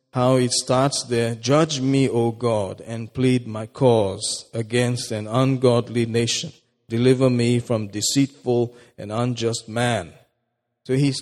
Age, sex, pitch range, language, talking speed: 40-59, male, 115-130 Hz, English, 135 wpm